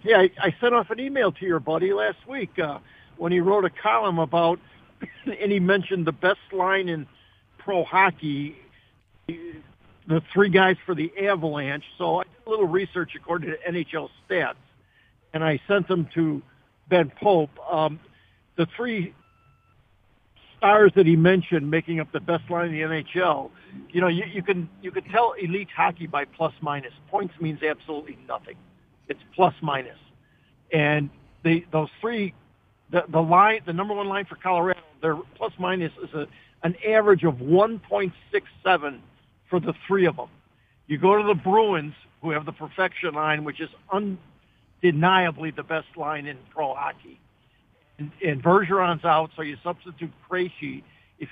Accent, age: American, 60-79